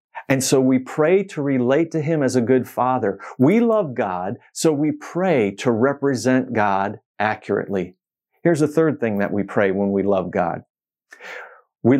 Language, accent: English, American